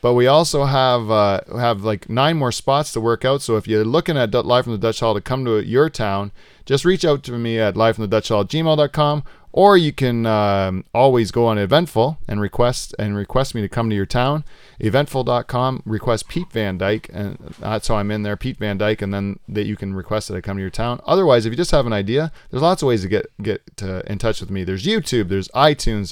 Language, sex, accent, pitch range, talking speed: English, male, American, 105-125 Hz, 250 wpm